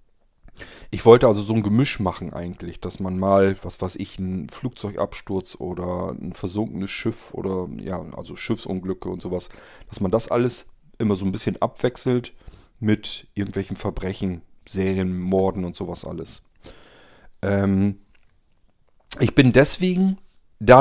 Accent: German